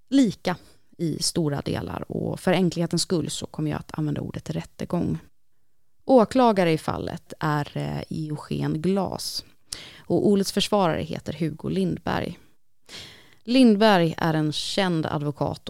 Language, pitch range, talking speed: Swedish, 150-190 Hz, 120 wpm